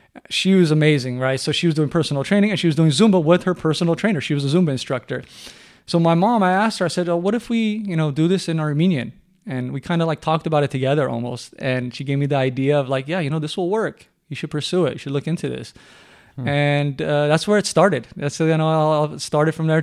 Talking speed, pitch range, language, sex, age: 265 wpm, 135-160 Hz, English, male, 20-39